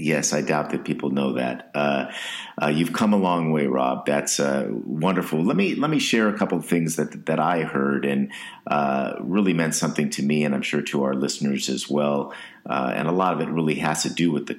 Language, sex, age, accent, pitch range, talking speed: English, male, 50-69, American, 70-80 Hz, 240 wpm